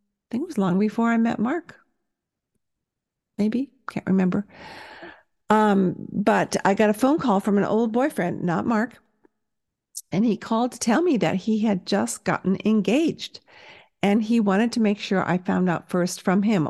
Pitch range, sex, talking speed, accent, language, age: 195-250 Hz, female, 175 wpm, American, English, 50-69